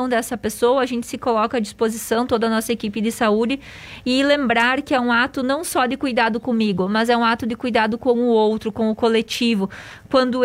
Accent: Brazilian